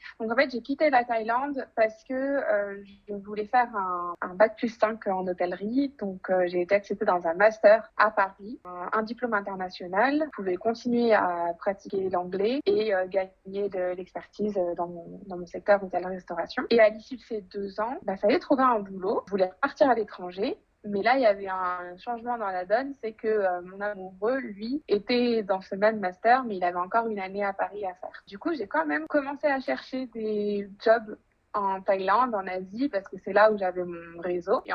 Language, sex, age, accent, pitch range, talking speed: French, female, 20-39, French, 185-235 Hz, 215 wpm